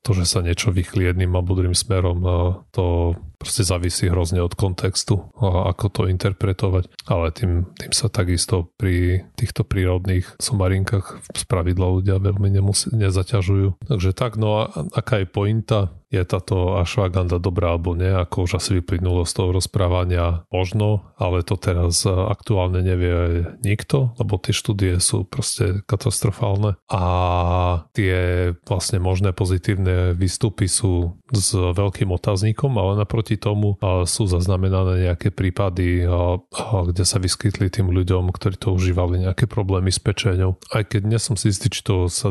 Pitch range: 90-105 Hz